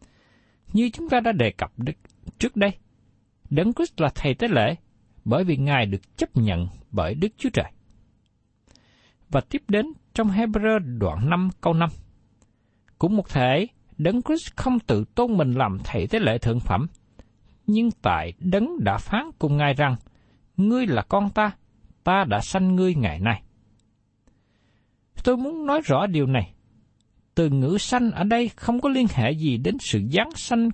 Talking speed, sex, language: 170 wpm, male, Vietnamese